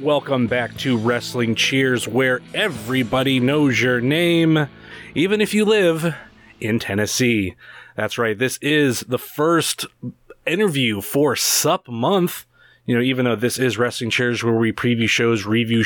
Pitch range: 120-155 Hz